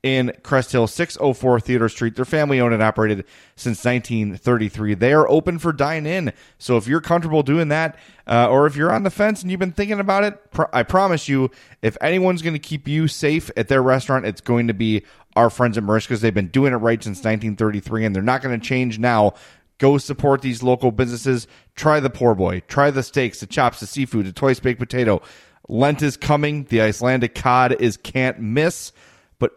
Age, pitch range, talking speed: 30-49, 110-140 Hz, 205 wpm